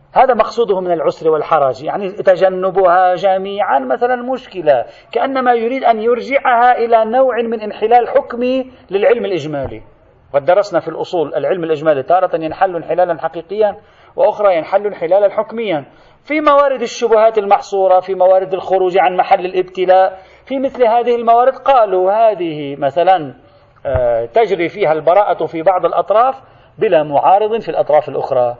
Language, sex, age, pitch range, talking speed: Arabic, male, 40-59, 160-230 Hz, 130 wpm